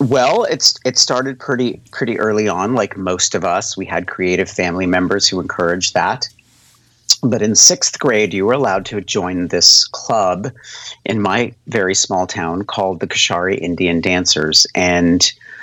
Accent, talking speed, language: American, 160 wpm, English